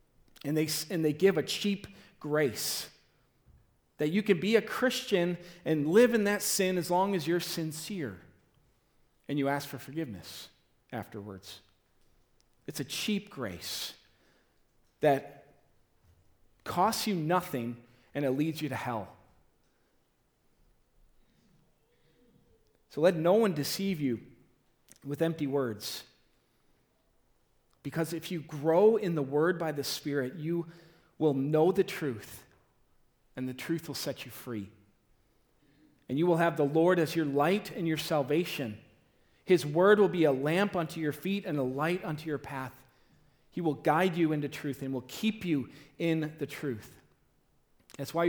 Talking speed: 145 wpm